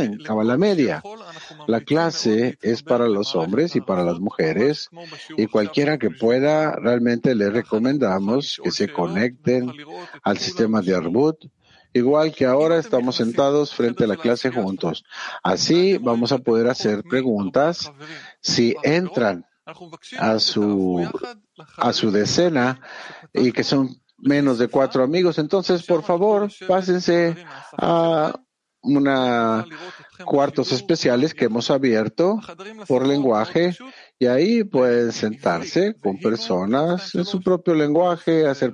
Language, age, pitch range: English, 50-69, 120-165 Hz